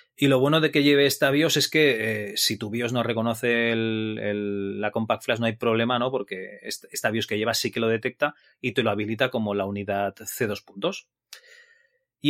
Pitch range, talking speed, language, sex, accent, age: 110-140 Hz, 210 wpm, Spanish, male, Spanish, 30-49